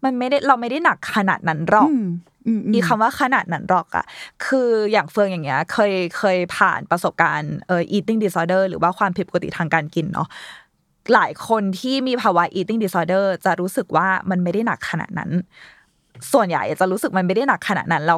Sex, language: female, Thai